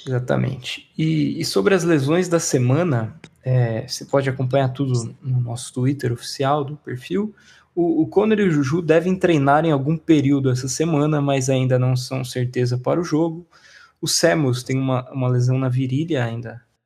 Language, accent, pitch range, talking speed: Portuguese, Brazilian, 125-150 Hz, 175 wpm